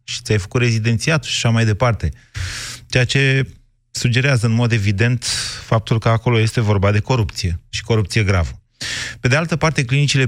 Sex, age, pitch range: male, 30-49, 100-120 Hz